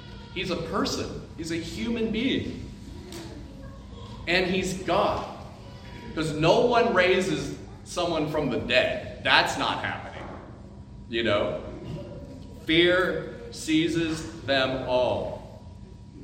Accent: American